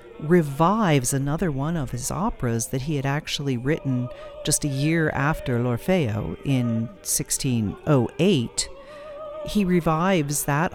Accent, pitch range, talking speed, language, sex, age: American, 115-145 Hz, 115 wpm, English, female, 50-69